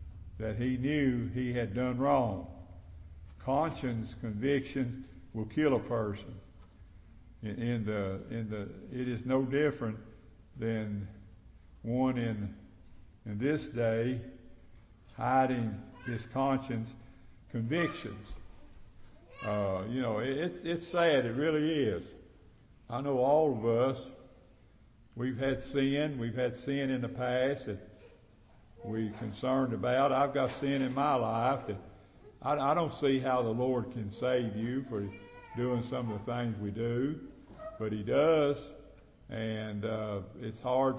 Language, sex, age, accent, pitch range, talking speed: English, male, 60-79, American, 105-130 Hz, 135 wpm